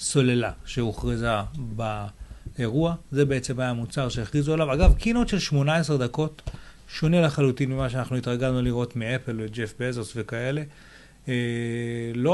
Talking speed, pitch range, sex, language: 125 wpm, 120-150 Hz, male, Hebrew